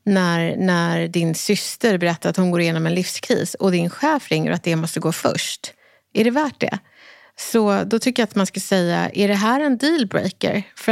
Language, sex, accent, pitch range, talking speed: Swedish, female, native, 170-220 Hz, 215 wpm